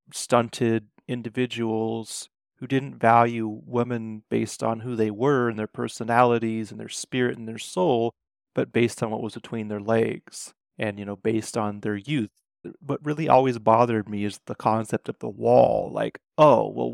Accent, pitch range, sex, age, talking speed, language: American, 110-125 Hz, male, 30-49, 175 wpm, English